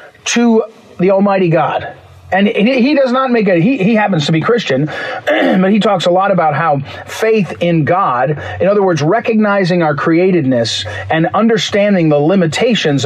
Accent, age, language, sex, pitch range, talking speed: American, 40-59, English, male, 165-225 Hz, 165 wpm